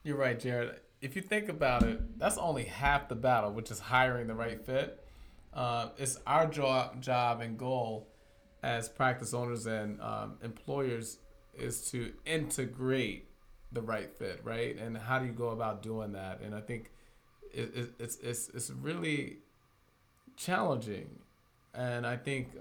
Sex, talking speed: male, 160 wpm